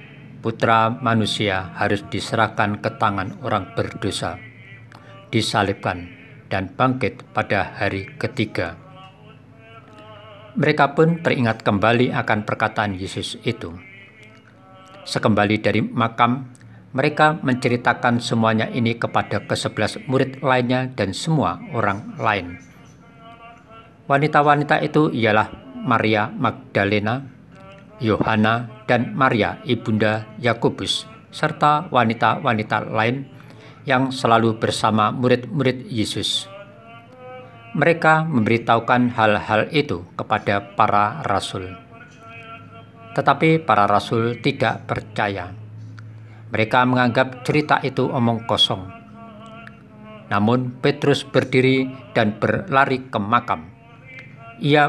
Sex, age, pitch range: male, 50-69, 110-130 Hz